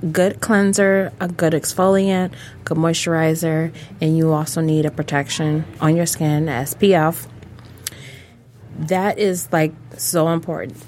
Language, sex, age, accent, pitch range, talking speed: English, female, 20-39, American, 145-165 Hz, 120 wpm